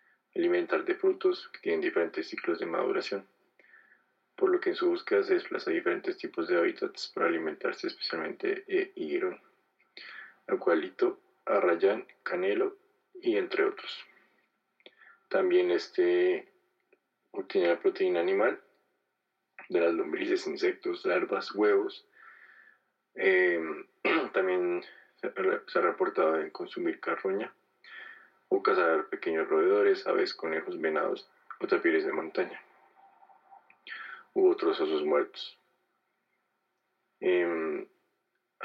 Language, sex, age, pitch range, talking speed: Spanish, male, 20-39, 365-400 Hz, 105 wpm